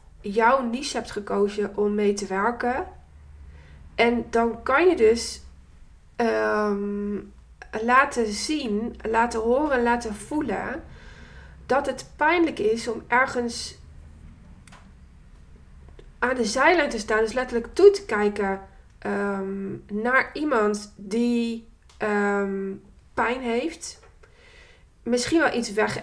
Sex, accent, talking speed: female, Dutch, 100 wpm